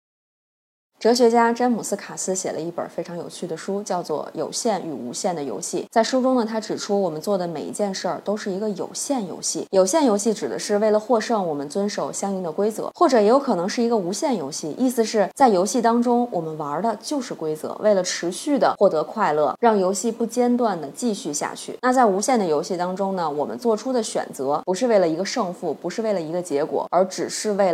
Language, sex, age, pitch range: Chinese, female, 20-39, 180-240 Hz